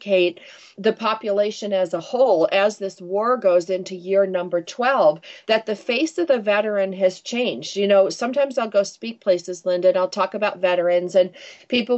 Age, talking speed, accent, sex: 40-59, 180 wpm, American, female